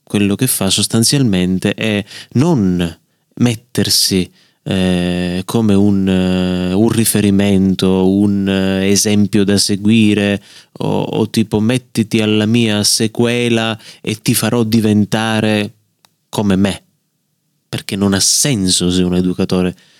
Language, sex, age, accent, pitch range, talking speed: Italian, male, 30-49, native, 95-115 Hz, 115 wpm